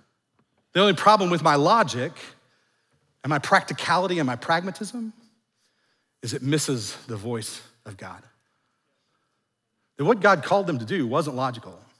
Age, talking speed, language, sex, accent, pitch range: 40-59, 135 wpm, English, male, American, 125-175 Hz